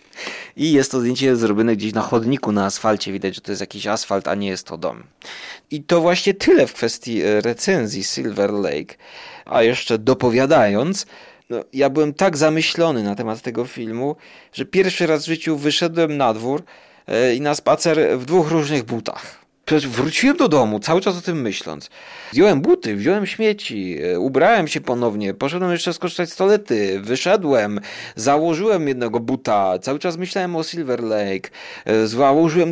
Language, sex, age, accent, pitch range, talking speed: Polish, male, 30-49, native, 110-155 Hz, 160 wpm